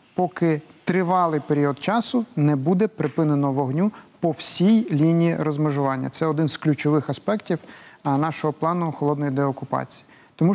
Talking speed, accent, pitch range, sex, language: 125 wpm, native, 145-180 Hz, male, Ukrainian